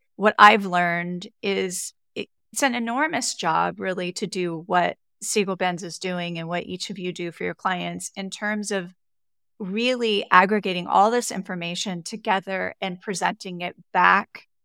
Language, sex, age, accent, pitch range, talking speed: English, female, 30-49, American, 175-205 Hz, 155 wpm